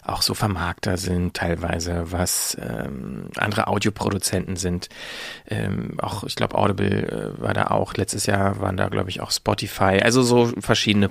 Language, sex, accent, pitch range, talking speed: German, male, German, 95-115 Hz, 155 wpm